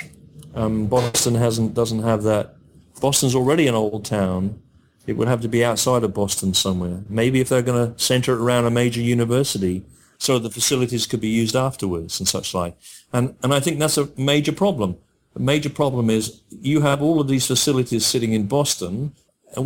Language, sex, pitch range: English, male, 105-125 Hz